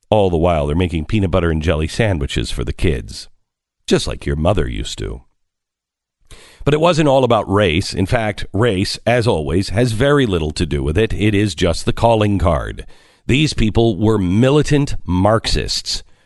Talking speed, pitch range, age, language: 175 wpm, 90-150 Hz, 50-69, English